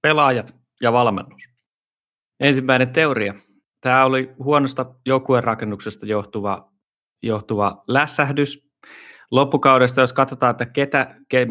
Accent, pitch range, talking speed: native, 110-130 Hz, 100 wpm